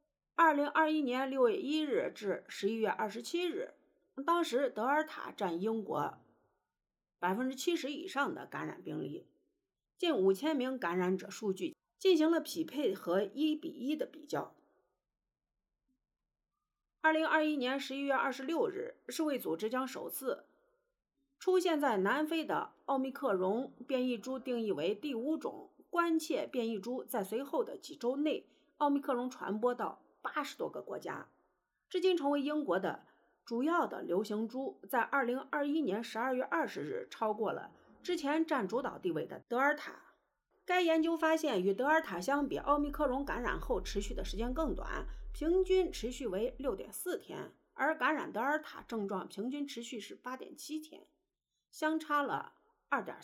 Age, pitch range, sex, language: 50-69, 250-325 Hz, female, Chinese